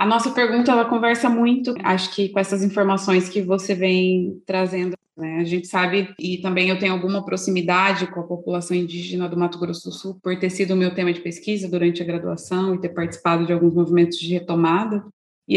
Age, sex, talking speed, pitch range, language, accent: 20-39, female, 210 wpm, 175-205 Hz, Portuguese, Brazilian